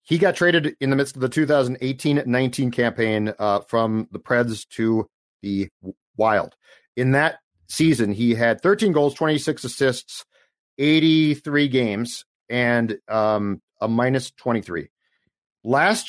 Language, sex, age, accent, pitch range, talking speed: English, male, 40-59, American, 110-135 Hz, 125 wpm